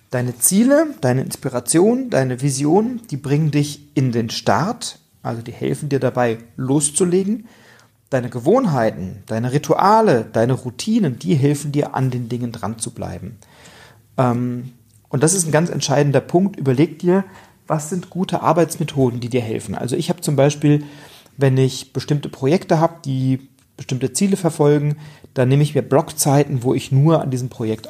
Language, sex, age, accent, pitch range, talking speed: German, male, 40-59, German, 125-150 Hz, 160 wpm